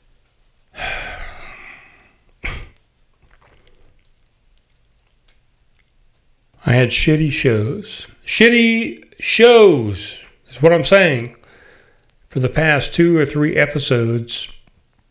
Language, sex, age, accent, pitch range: English, male, 40-59, American, 120-160 Hz